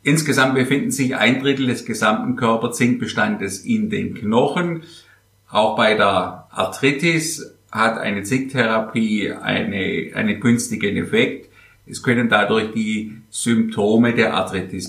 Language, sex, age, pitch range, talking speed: German, male, 50-69, 105-135 Hz, 115 wpm